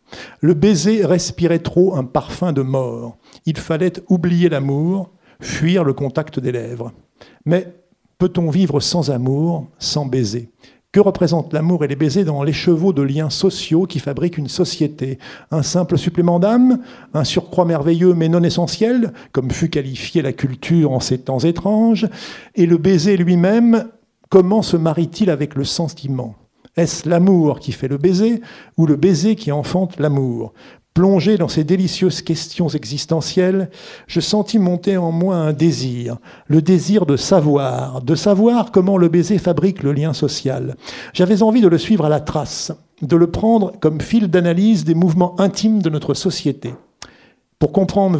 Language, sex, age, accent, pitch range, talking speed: French, male, 50-69, French, 145-185 Hz, 160 wpm